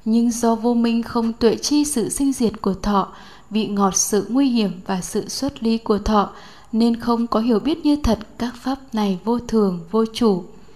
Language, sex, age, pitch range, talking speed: Vietnamese, female, 20-39, 205-240 Hz, 205 wpm